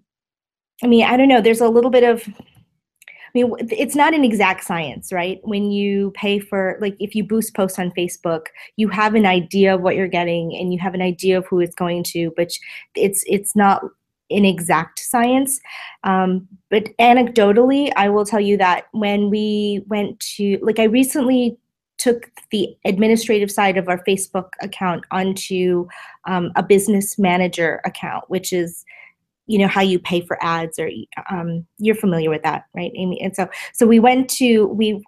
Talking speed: 185 wpm